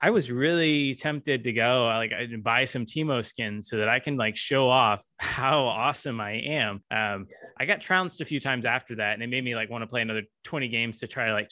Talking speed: 245 wpm